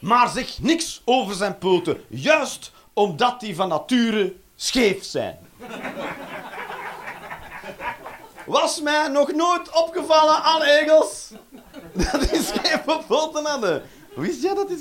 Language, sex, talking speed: Dutch, male, 120 wpm